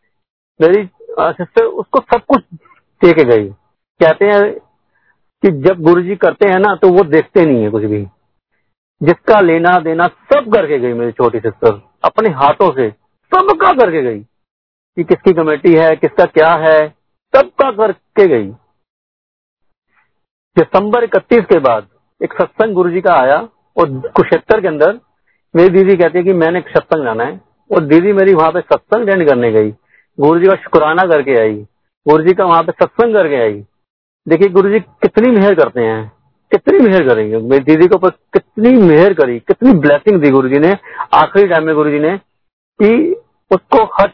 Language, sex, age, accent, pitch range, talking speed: Hindi, male, 50-69, native, 135-200 Hz, 160 wpm